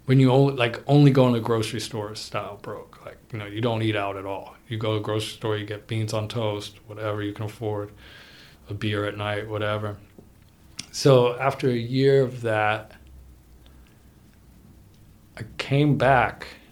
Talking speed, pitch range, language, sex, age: 180 wpm, 105-135 Hz, English, male, 40-59